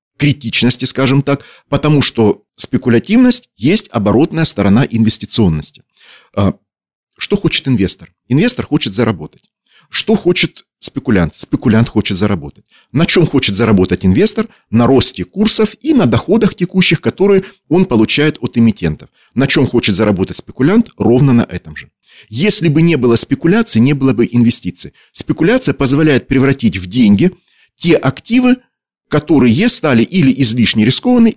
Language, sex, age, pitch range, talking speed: Russian, male, 40-59, 110-165 Hz, 130 wpm